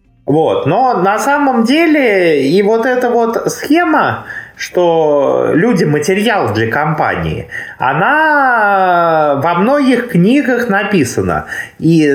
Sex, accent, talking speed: male, native, 110 wpm